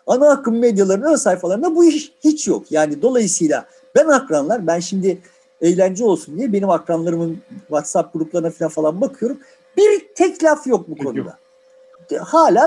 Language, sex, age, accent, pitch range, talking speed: Turkish, male, 50-69, native, 200-310 Hz, 145 wpm